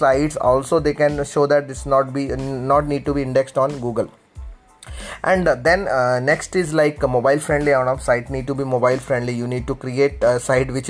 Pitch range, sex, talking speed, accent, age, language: 130-145 Hz, male, 235 wpm, native, 20-39, Malayalam